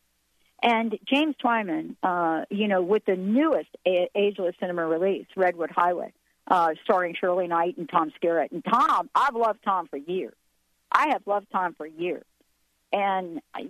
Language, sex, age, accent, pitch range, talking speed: English, female, 50-69, American, 180-235 Hz, 160 wpm